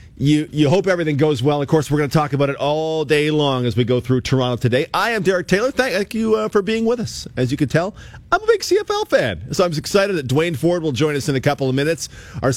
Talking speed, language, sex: 275 wpm, English, male